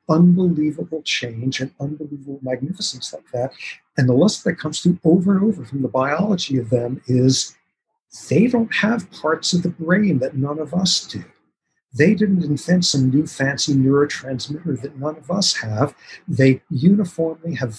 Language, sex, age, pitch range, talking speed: English, male, 50-69, 130-170 Hz, 165 wpm